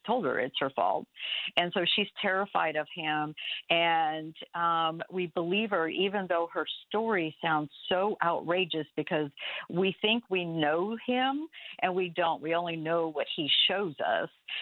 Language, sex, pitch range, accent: English, female, 155-195 Hz, American